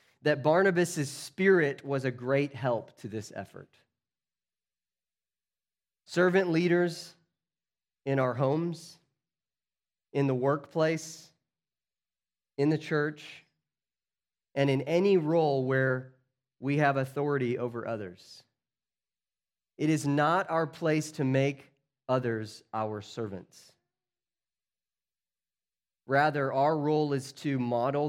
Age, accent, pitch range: 30-49, American, 110-160 Hz